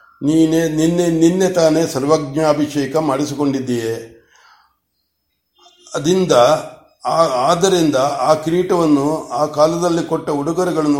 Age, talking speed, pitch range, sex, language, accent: 60-79, 75 wpm, 140-165 Hz, male, Kannada, native